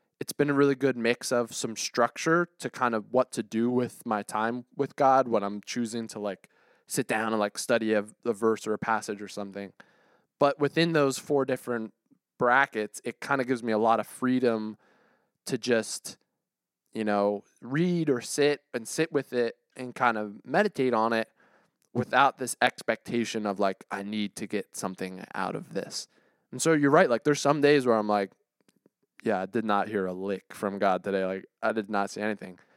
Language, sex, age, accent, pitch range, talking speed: English, male, 20-39, American, 105-140 Hz, 200 wpm